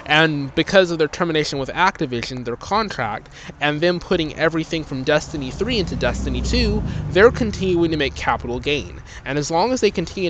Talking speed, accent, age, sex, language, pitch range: 180 wpm, American, 20-39, male, English, 115-160 Hz